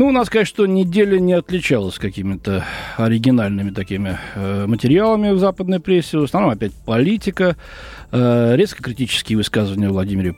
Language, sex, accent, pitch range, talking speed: Russian, male, native, 120-180 Hz, 135 wpm